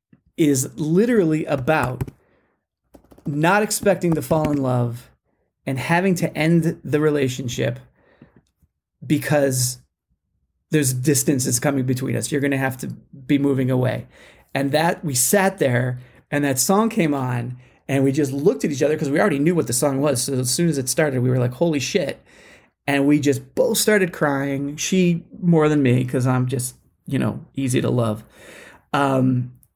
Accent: American